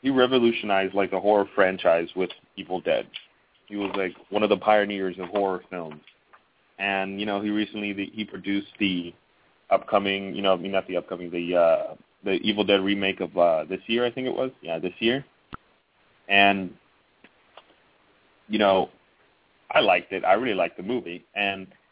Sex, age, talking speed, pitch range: male, 30-49, 165 wpm, 95-105 Hz